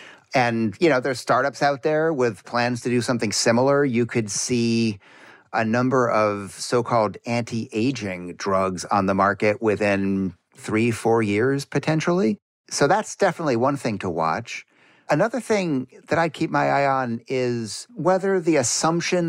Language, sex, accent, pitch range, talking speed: English, male, American, 105-135 Hz, 150 wpm